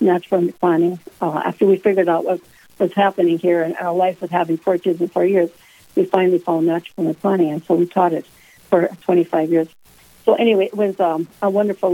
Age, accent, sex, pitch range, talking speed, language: 60-79, American, female, 175-200 Hz, 205 wpm, English